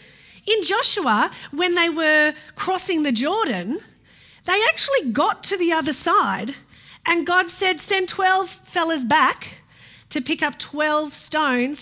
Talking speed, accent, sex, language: 135 wpm, Australian, female, English